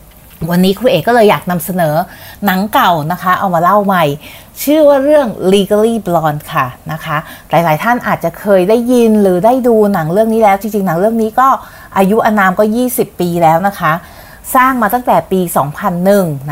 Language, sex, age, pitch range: Thai, female, 30-49, 180-230 Hz